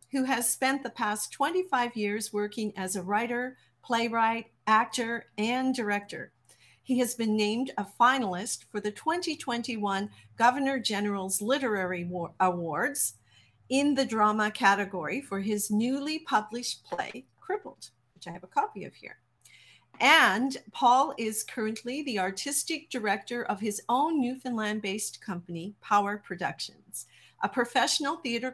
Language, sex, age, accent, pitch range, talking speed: English, female, 50-69, American, 200-250 Hz, 130 wpm